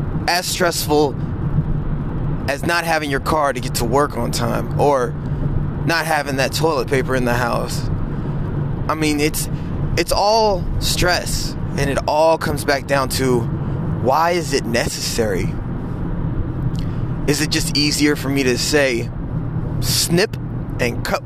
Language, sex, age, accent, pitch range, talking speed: English, male, 20-39, American, 120-160 Hz, 140 wpm